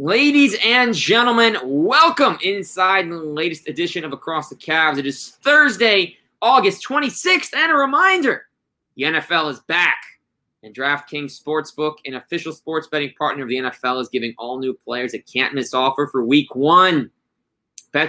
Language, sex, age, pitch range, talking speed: English, male, 20-39, 155-215 Hz, 155 wpm